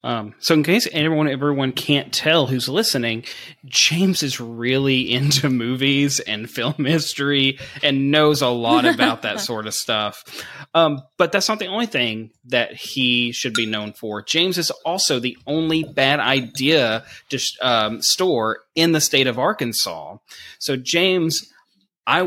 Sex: male